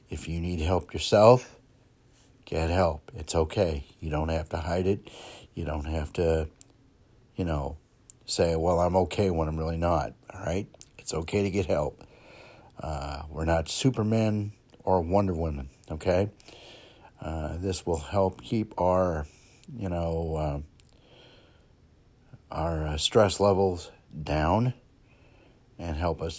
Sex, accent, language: male, American, English